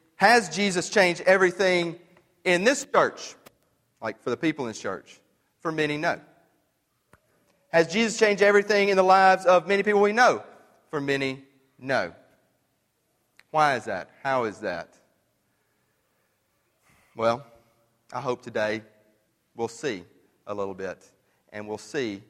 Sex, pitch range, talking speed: male, 135-205 Hz, 135 wpm